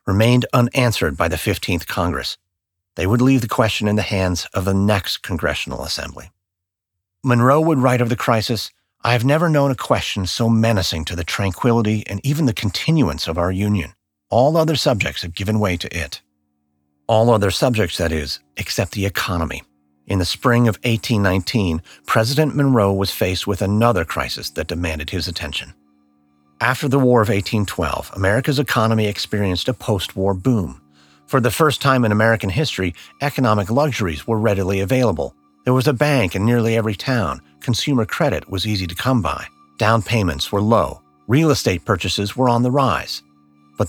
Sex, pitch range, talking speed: male, 90-120 Hz, 170 wpm